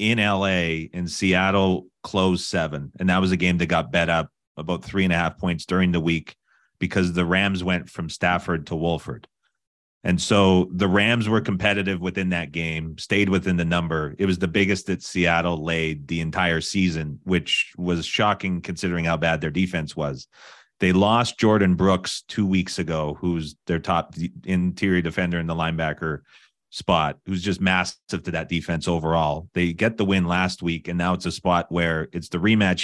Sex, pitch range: male, 85-95 Hz